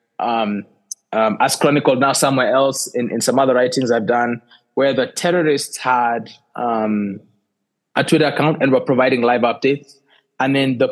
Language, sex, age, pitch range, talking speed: English, male, 20-39, 120-145 Hz, 165 wpm